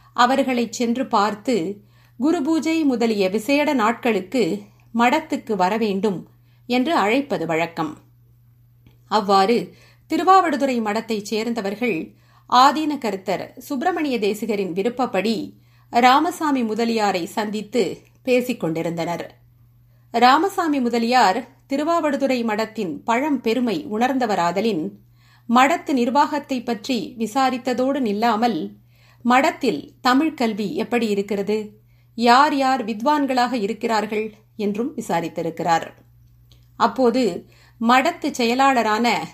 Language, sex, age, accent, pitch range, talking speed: Tamil, female, 50-69, native, 195-265 Hz, 80 wpm